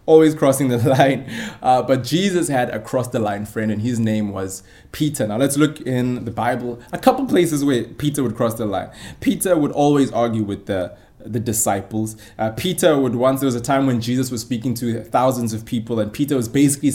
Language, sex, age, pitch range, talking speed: English, male, 20-39, 115-155 Hz, 215 wpm